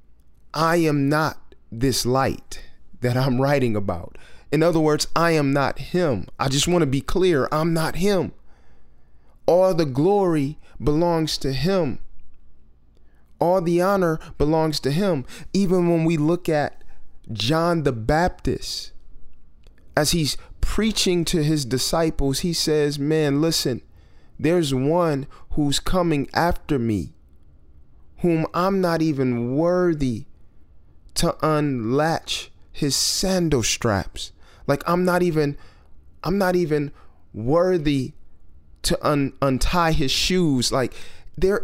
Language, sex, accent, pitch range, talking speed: English, male, American, 115-175 Hz, 125 wpm